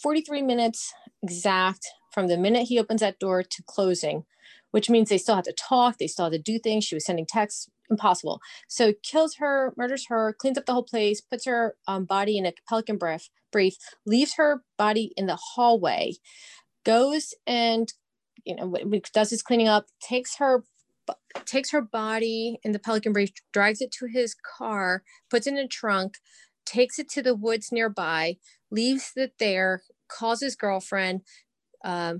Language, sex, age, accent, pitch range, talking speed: English, female, 40-59, American, 180-235 Hz, 175 wpm